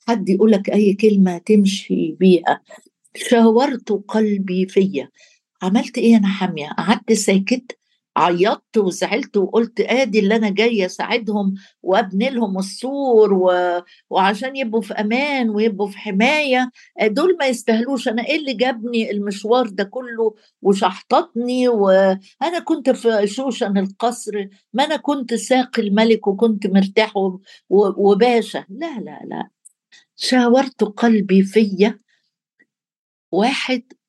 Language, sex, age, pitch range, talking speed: Arabic, female, 60-79, 195-250 Hz, 115 wpm